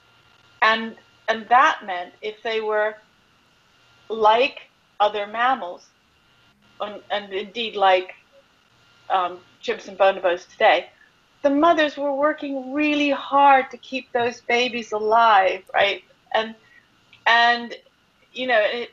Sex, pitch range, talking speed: female, 210-270 Hz, 115 wpm